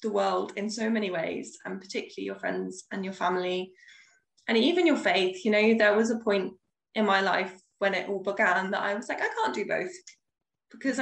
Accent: British